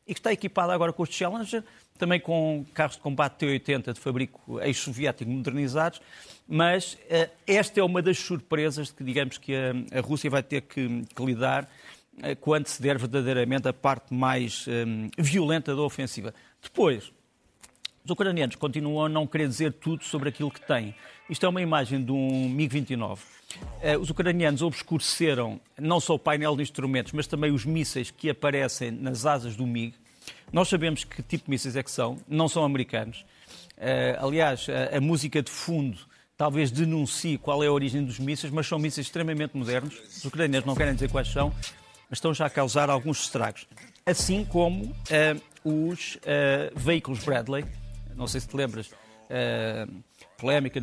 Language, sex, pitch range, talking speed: Portuguese, male, 125-155 Hz, 165 wpm